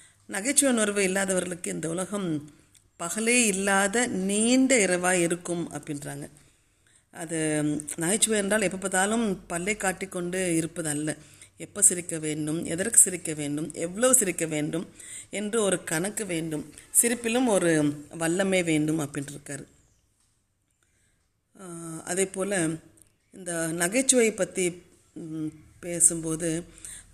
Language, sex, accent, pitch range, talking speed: Tamil, female, native, 155-195 Hz, 95 wpm